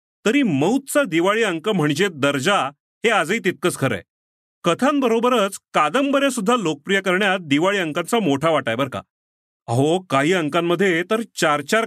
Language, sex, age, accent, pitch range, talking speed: Marathi, male, 40-59, native, 155-235 Hz, 130 wpm